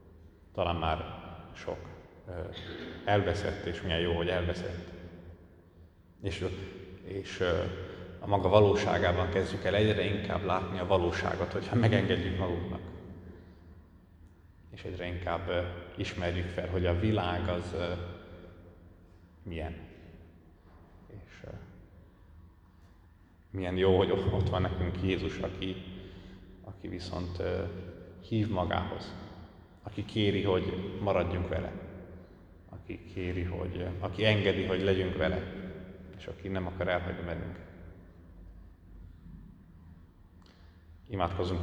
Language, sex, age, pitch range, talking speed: Hungarian, male, 30-49, 85-95 Hz, 95 wpm